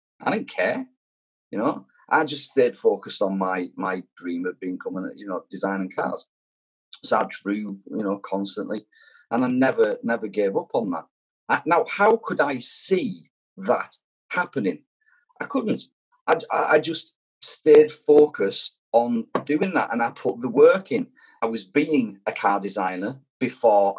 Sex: male